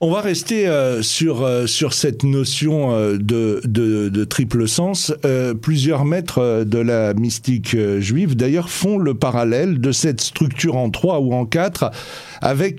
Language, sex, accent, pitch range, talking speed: French, male, French, 125-165 Hz, 175 wpm